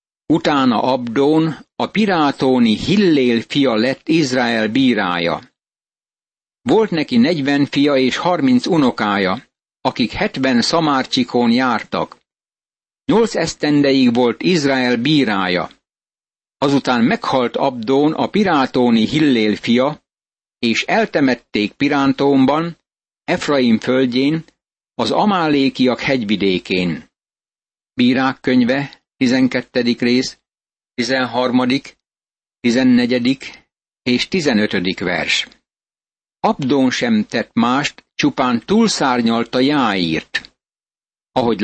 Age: 60-79